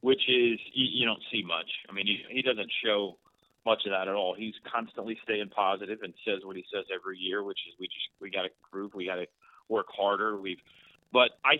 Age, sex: 40-59, male